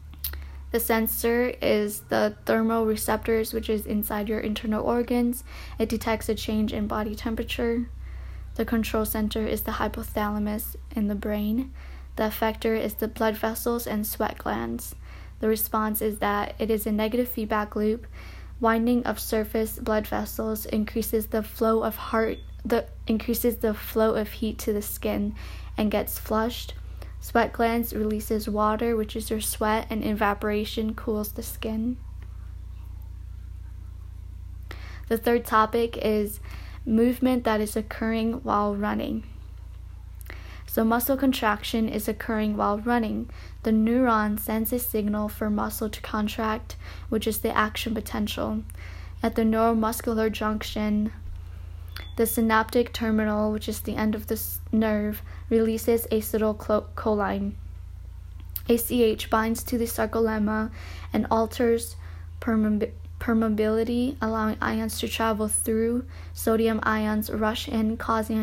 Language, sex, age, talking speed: Amharic, female, 10-29, 130 wpm